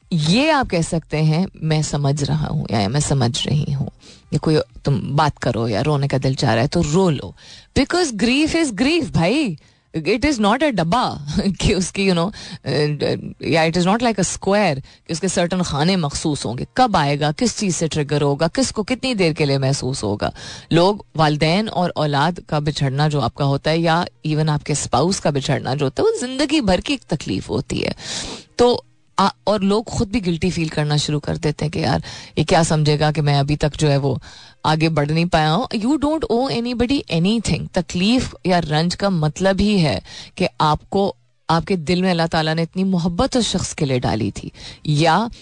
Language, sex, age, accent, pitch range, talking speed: Hindi, female, 30-49, native, 150-210 Hz, 205 wpm